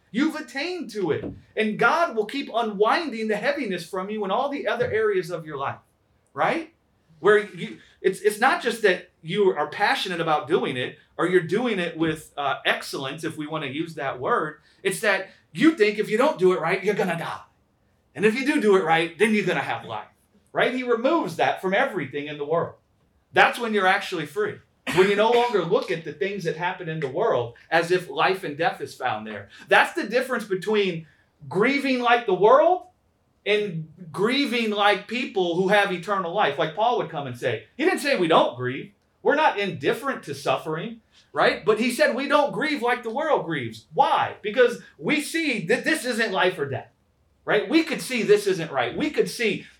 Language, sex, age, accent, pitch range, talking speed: English, male, 30-49, American, 165-250 Hz, 210 wpm